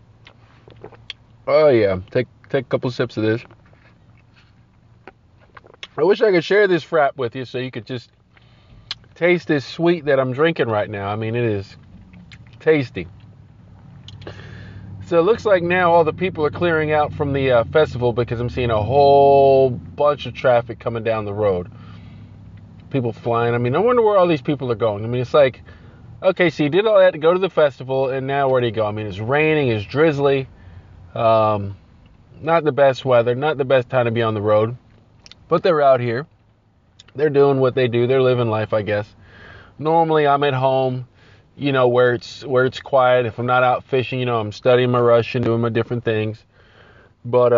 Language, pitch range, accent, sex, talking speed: English, 110-135 Hz, American, male, 200 wpm